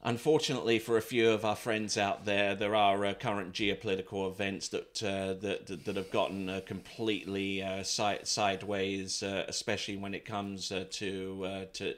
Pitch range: 100-115 Hz